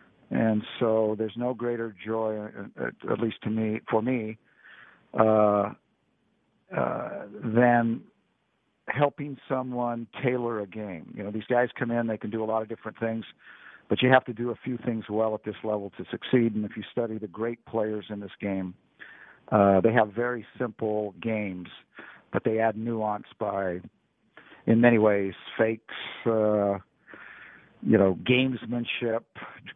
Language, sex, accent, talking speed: English, male, American, 155 wpm